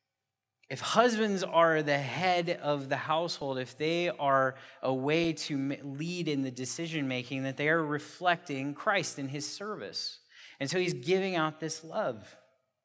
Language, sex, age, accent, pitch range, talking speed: English, male, 30-49, American, 125-165 Hz, 155 wpm